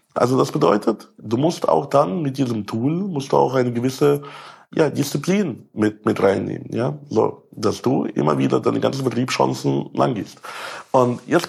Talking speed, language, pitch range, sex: 170 wpm, German, 115-160 Hz, male